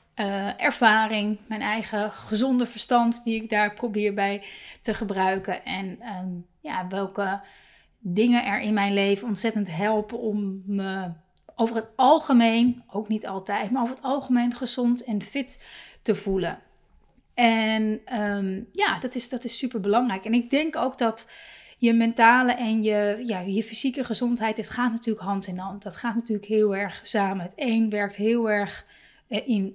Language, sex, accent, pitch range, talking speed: Dutch, female, Dutch, 200-240 Hz, 155 wpm